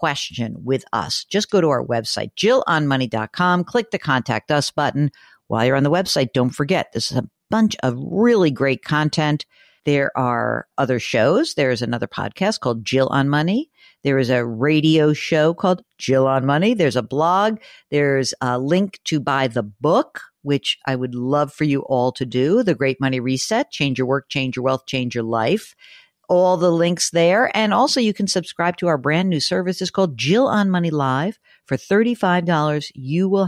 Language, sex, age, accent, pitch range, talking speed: English, female, 50-69, American, 135-185 Hz, 190 wpm